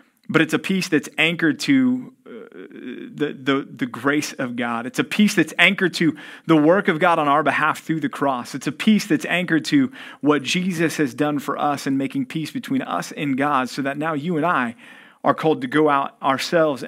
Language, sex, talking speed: English, male, 215 wpm